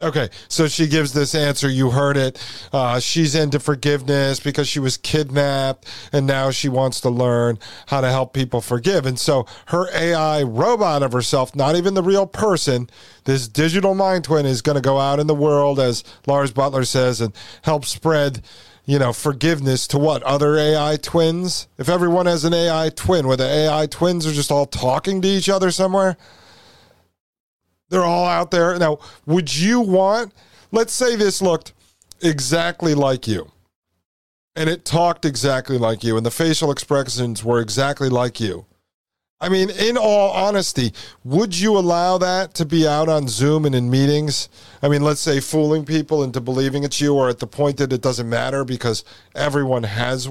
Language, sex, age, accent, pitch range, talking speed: English, male, 40-59, American, 125-160 Hz, 180 wpm